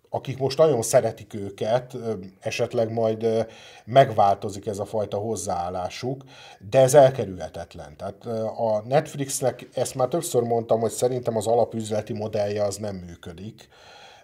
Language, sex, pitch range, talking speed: Hungarian, male, 100-125 Hz, 125 wpm